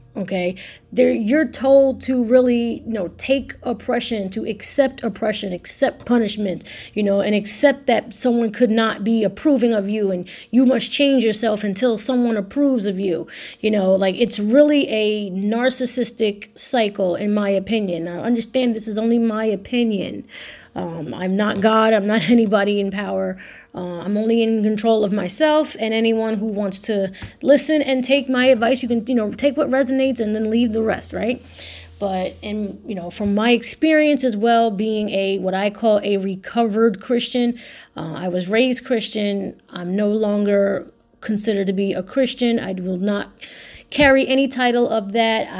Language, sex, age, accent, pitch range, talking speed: English, female, 30-49, American, 200-245 Hz, 175 wpm